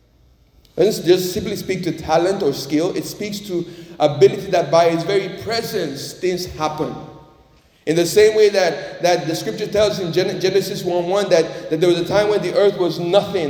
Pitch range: 165-195 Hz